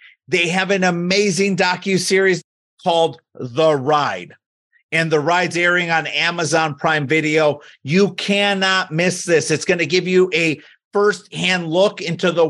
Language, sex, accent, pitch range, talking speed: English, male, American, 145-180 Hz, 145 wpm